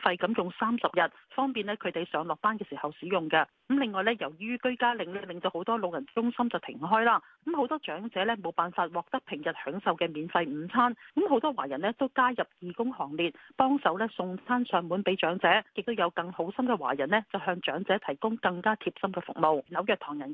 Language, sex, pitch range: Chinese, female, 175-245 Hz